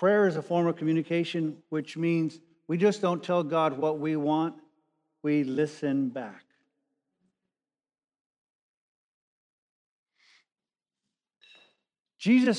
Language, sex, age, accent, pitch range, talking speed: English, male, 50-69, American, 155-180 Hz, 95 wpm